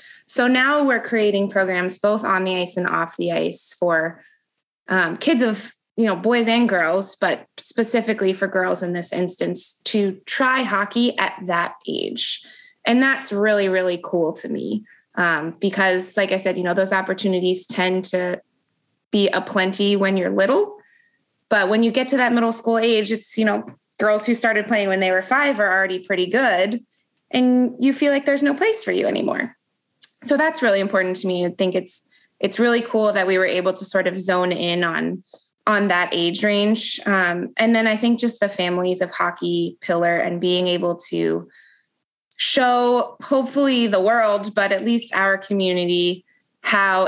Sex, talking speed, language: female, 180 wpm, English